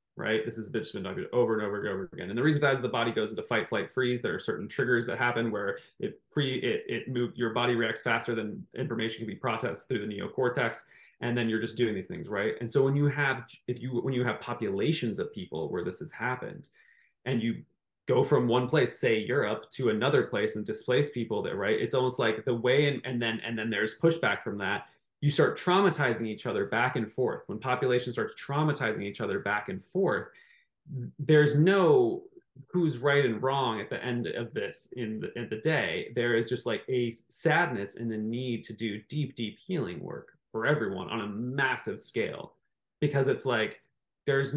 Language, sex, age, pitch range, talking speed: English, male, 20-39, 115-140 Hz, 215 wpm